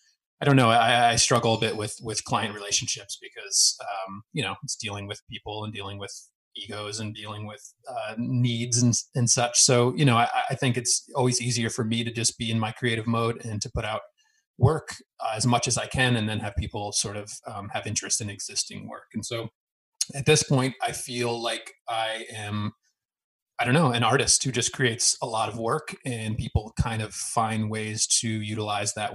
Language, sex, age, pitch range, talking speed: English, male, 30-49, 105-125 Hz, 215 wpm